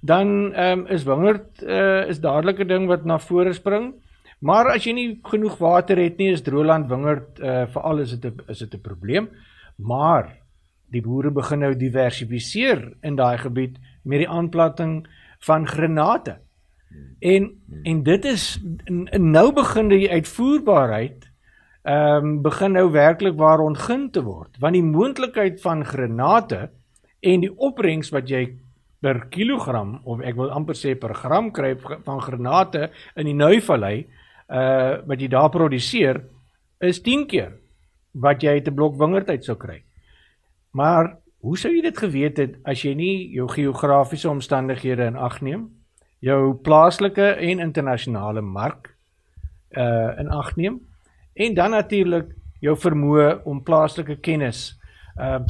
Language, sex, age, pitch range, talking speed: Swedish, male, 60-79, 125-180 Hz, 145 wpm